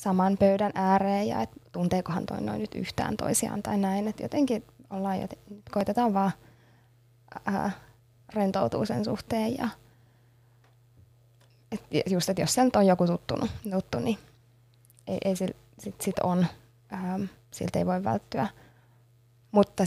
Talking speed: 125 wpm